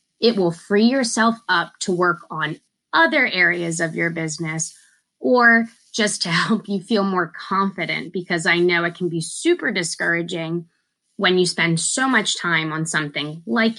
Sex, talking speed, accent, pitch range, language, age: female, 165 wpm, American, 170-205 Hz, English, 20-39